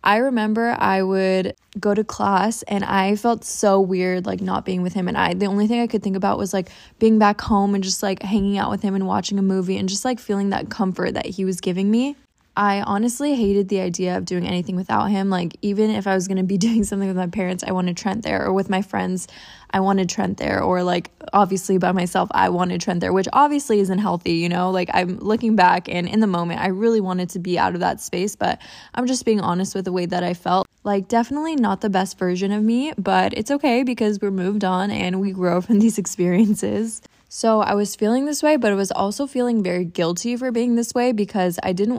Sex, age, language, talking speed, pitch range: female, 10-29, English, 245 wpm, 185-210 Hz